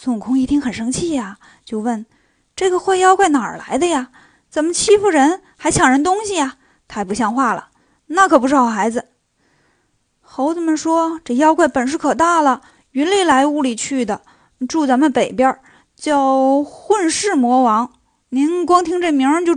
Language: Chinese